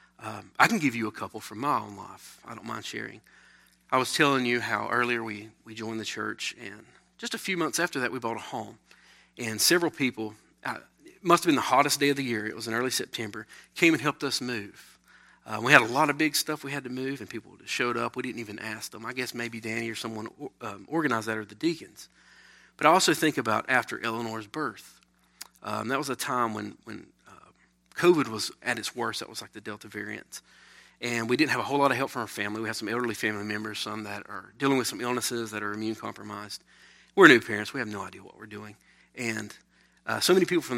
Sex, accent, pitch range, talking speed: male, American, 105-125 Hz, 245 wpm